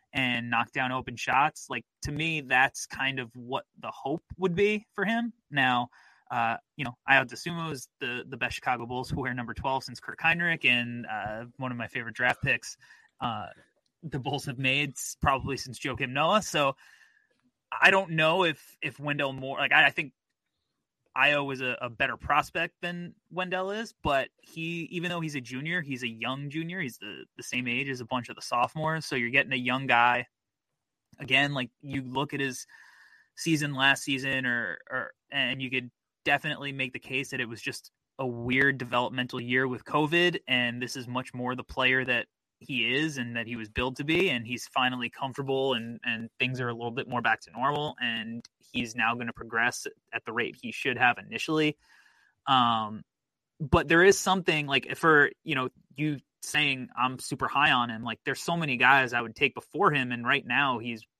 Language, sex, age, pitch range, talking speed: English, male, 20-39, 125-150 Hz, 205 wpm